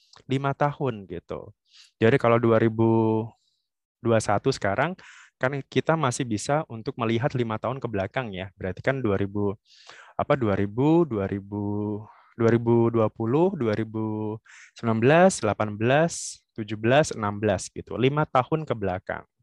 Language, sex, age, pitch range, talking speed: Indonesian, male, 20-39, 105-135 Hz, 105 wpm